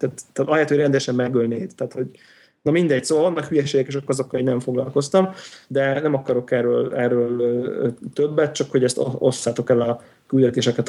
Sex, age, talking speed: male, 30-49, 180 wpm